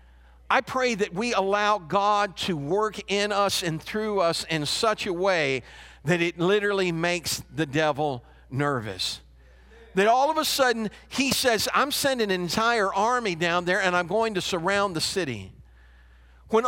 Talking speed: 165 wpm